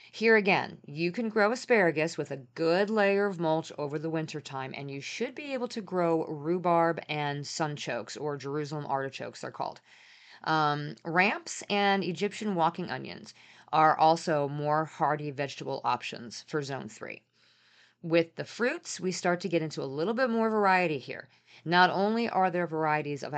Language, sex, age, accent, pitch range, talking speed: English, female, 40-59, American, 145-195 Hz, 170 wpm